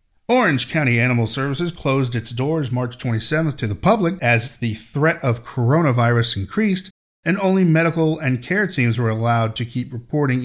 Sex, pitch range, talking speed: male, 115-160 Hz, 165 wpm